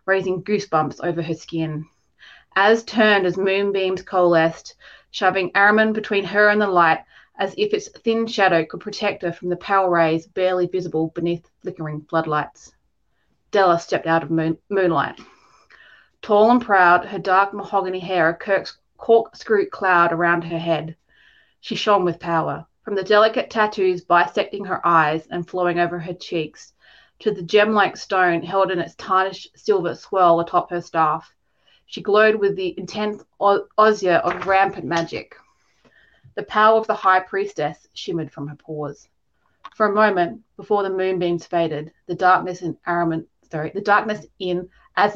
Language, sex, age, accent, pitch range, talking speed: English, female, 30-49, Australian, 170-205 Hz, 155 wpm